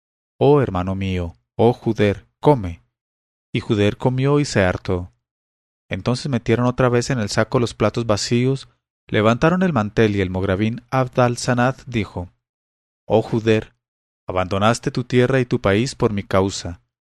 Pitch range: 100-125 Hz